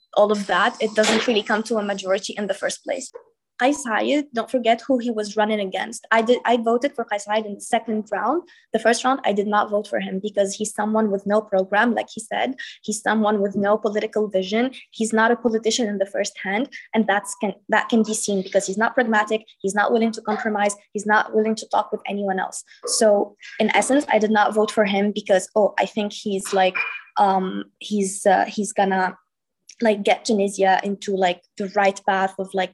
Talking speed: 215 wpm